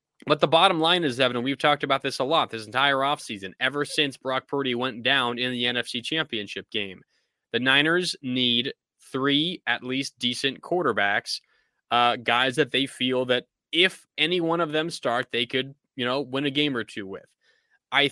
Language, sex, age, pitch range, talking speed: English, male, 20-39, 125-160 Hz, 190 wpm